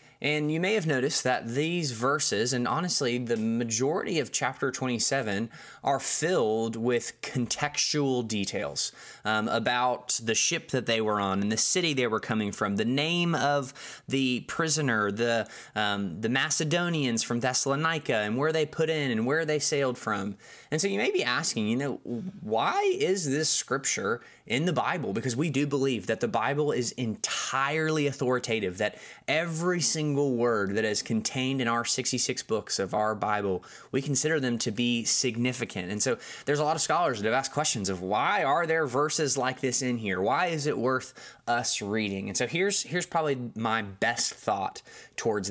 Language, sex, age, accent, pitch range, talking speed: English, male, 20-39, American, 115-150 Hz, 180 wpm